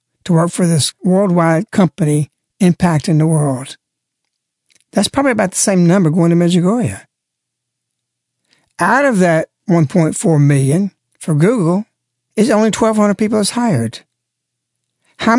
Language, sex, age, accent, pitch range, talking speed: English, male, 60-79, American, 150-215 Hz, 125 wpm